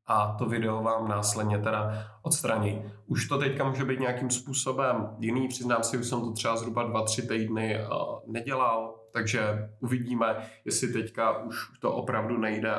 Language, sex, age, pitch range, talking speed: Czech, male, 20-39, 105-120 Hz, 155 wpm